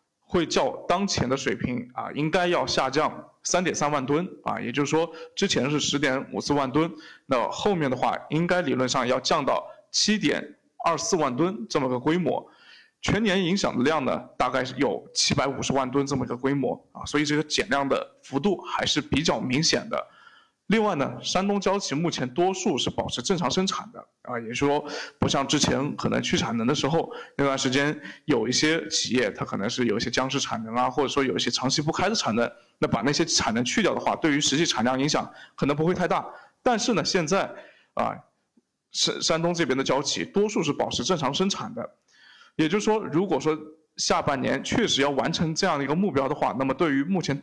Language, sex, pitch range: Chinese, male, 135-190 Hz